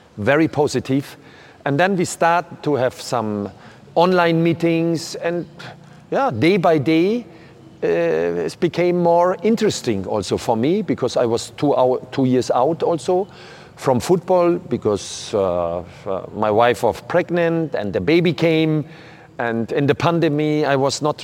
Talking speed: 145 wpm